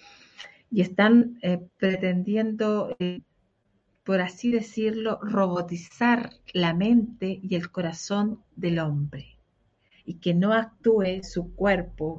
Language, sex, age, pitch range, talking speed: Spanish, female, 50-69, 170-210 Hz, 110 wpm